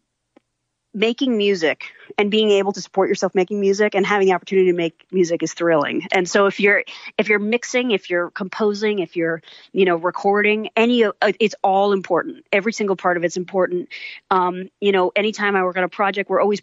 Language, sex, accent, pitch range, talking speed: English, female, American, 175-205 Hz, 200 wpm